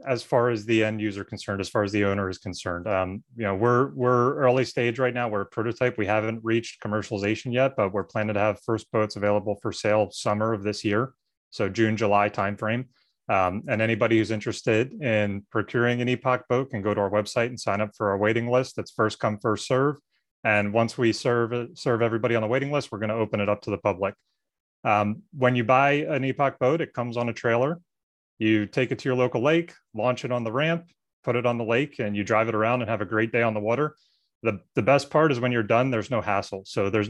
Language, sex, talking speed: English, male, 240 wpm